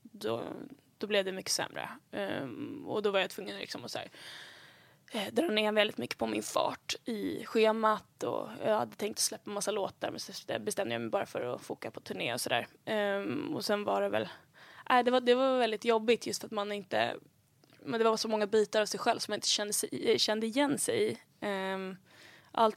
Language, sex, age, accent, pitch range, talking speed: English, female, 10-29, Swedish, 205-230 Hz, 220 wpm